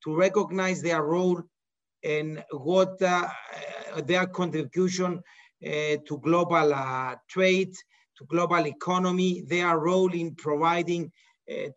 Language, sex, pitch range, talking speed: English, male, 155-185 Hz, 110 wpm